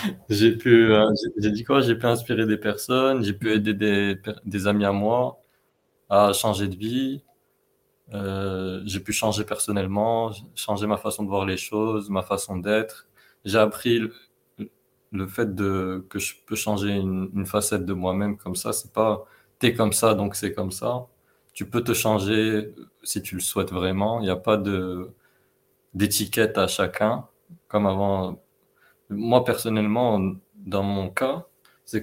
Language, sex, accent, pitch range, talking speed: French, male, French, 100-115 Hz, 170 wpm